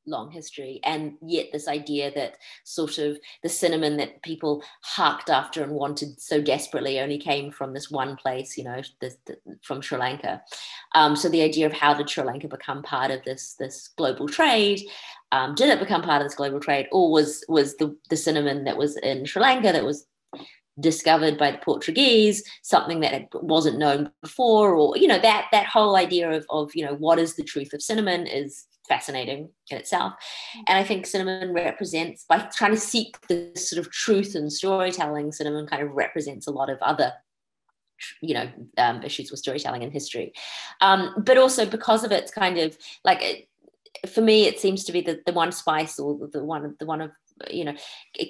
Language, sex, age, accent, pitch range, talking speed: English, female, 30-49, Australian, 145-190 Hz, 200 wpm